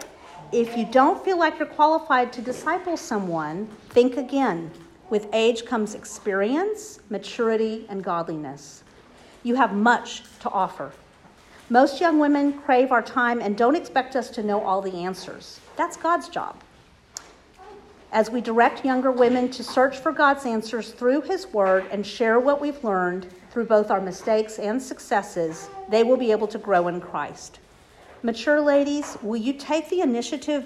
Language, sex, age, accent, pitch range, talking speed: English, female, 50-69, American, 200-275 Hz, 160 wpm